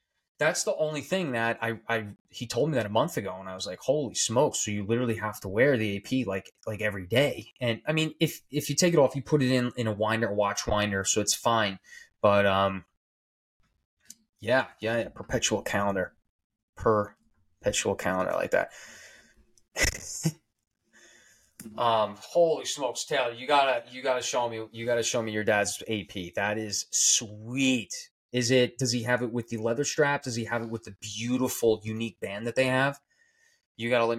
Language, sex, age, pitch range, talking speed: English, male, 20-39, 105-140 Hz, 195 wpm